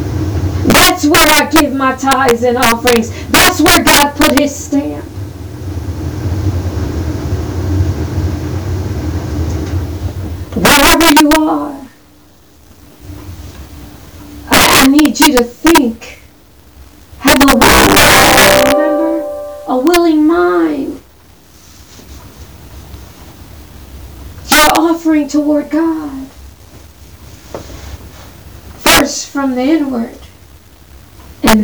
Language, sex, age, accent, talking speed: English, female, 30-49, American, 70 wpm